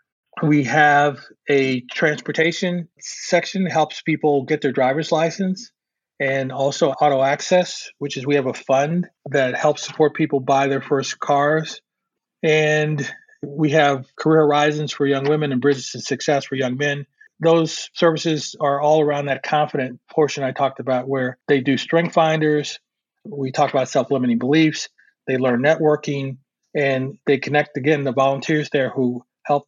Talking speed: 160 wpm